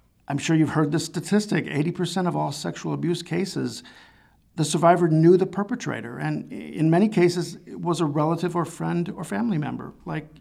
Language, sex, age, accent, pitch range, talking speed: English, male, 50-69, American, 140-175 Hz, 180 wpm